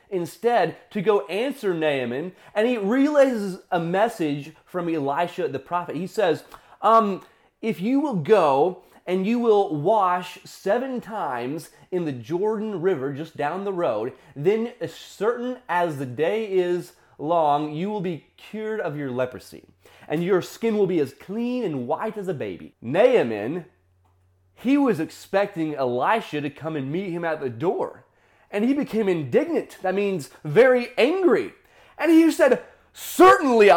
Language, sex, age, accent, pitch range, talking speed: English, male, 30-49, American, 170-275 Hz, 155 wpm